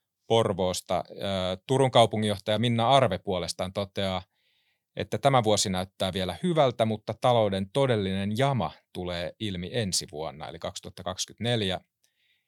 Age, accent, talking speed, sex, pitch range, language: 30-49, native, 110 wpm, male, 95-115 Hz, Finnish